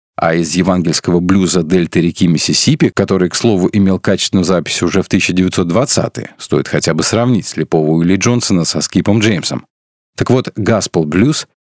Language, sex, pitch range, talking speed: Russian, male, 85-110 Hz, 150 wpm